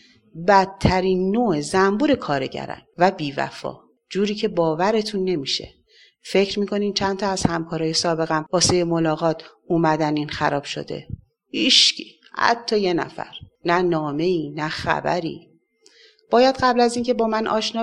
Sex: female